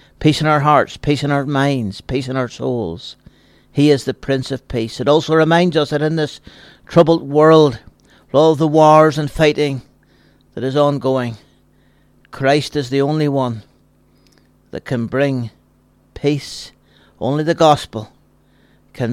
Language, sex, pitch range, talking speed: English, male, 125-155 Hz, 155 wpm